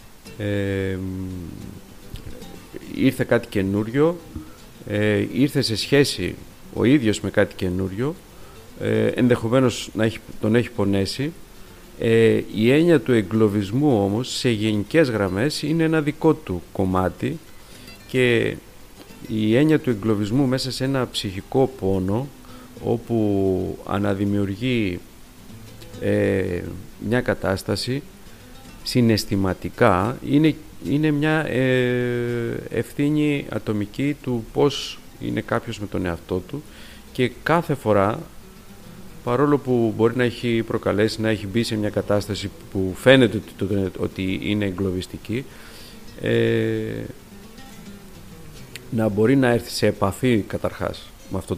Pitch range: 100-125 Hz